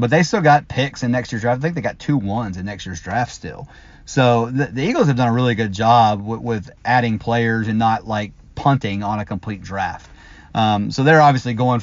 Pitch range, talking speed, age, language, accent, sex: 105-125 Hz, 235 wpm, 30-49, English, American, male